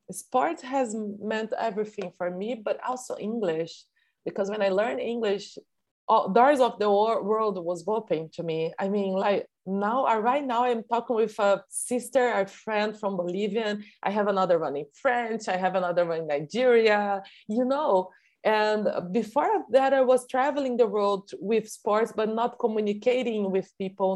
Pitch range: 185-225 Hz